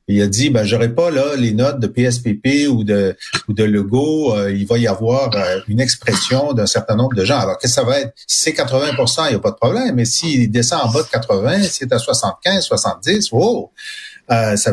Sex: male